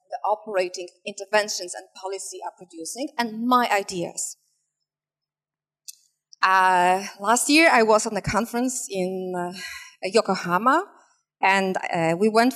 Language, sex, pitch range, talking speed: Polish, female, 185-265 Hz, 120 wpm